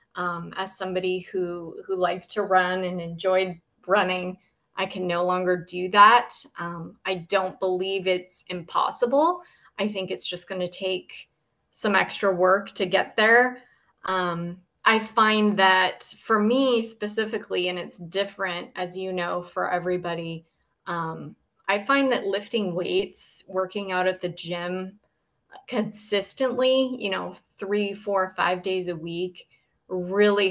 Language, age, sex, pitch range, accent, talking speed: English, 20-39, female, 175-200 Hz, American, 140 wpm